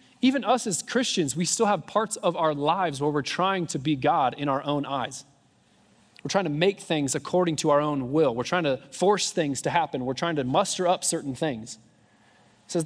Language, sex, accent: English, male, American